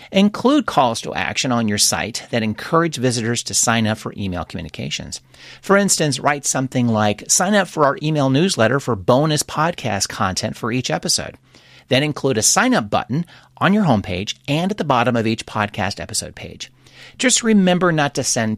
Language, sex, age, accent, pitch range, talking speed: English, male, 40-59, American, 115-160 Hz, 185 wpm